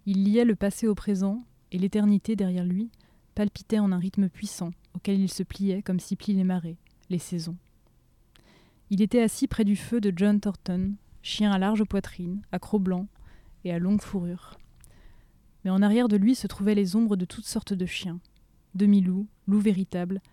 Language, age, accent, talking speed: French, 20-39, French, 185 wpm